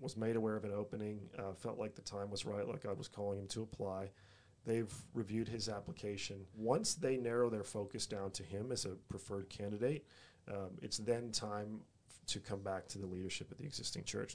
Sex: male